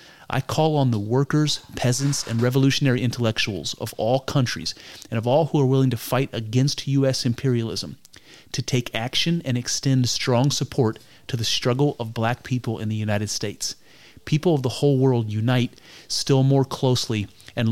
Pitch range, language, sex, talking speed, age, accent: 110-130 Hz, English, male, 170 wpm, 30-49, American